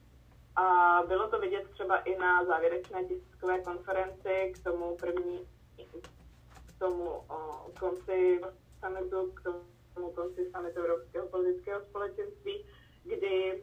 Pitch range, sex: 175-205 Hz, female